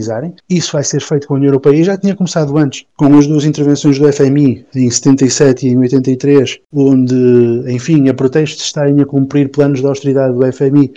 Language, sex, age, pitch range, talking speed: Portuguese, male, 20-39, 130-160 Hz, 210 wpm